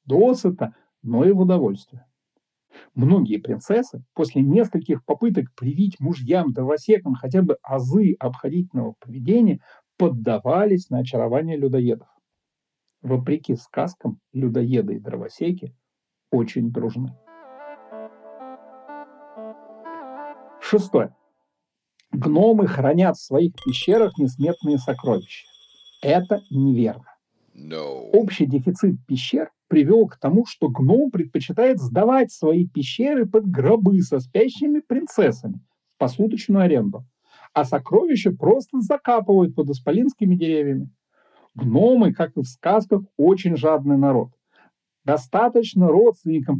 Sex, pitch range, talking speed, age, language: male, 135-220 Hz, 95 wpm, 60-79, Russian